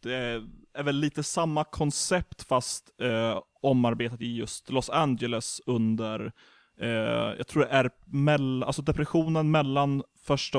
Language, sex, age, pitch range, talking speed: Swedish, male, 20-39, 110-130 Hz, 135 wpm